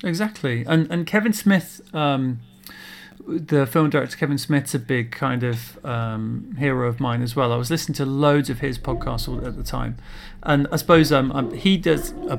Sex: male